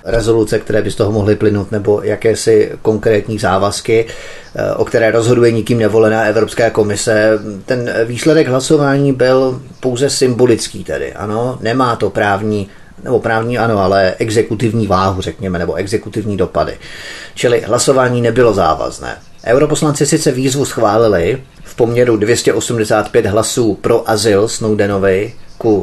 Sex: male